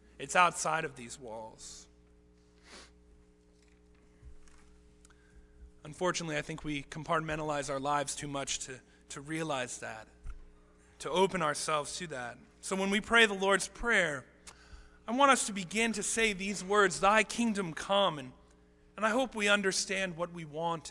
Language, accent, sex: English, American, male